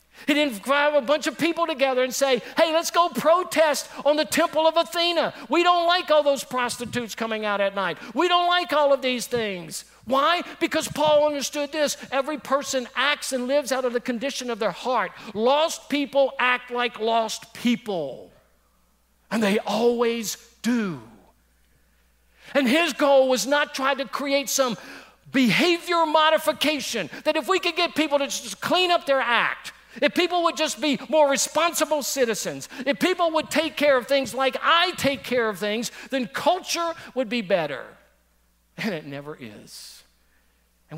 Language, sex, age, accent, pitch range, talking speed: English, male, 50-69, American, 190-290 Hz, 170 wpm